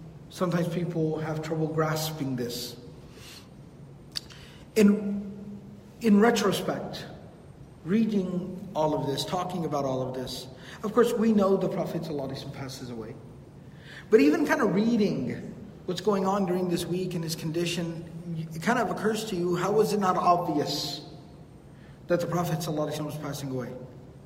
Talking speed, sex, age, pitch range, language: 145 wpm, male, 50-69, 155-195 Hz, English